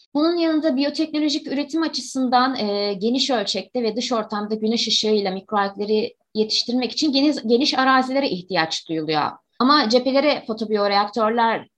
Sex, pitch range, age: female, 190-250 Hz, 20-39